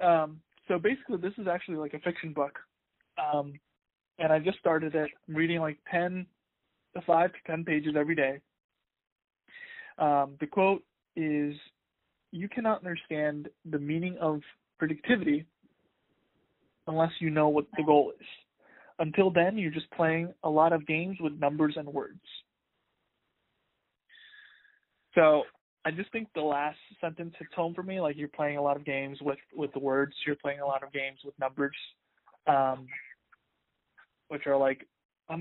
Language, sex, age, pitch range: English, male, 20-39, 145-170 Hz